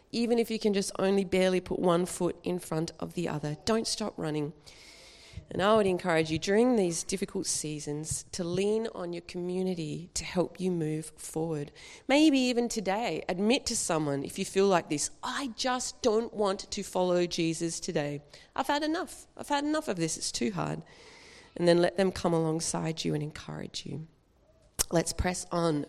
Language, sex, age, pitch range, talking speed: English, female, 30-49, 160-230 Hz, 185 wpm